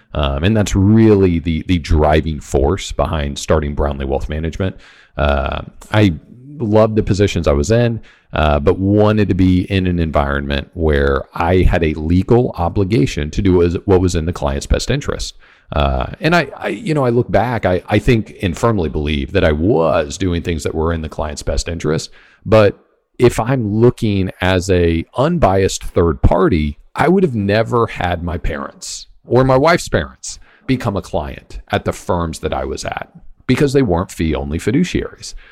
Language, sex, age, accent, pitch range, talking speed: English, male, 40-59, American, 75-105 Hz, 180 wpm